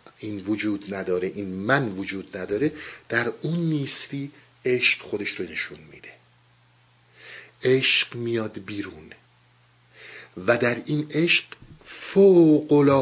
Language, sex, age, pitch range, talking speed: Persian, male, 50-69, 110-180 Hz, 105 wpm